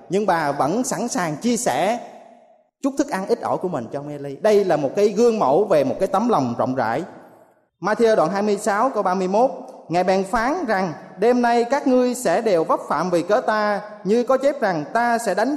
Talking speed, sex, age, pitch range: 215 wpm, male, 20-39, 180-235 Hz